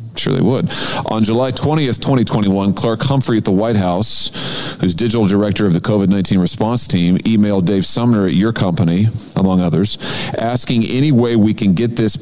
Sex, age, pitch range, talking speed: male, 40-59, 95-120 Hz, 175 wpm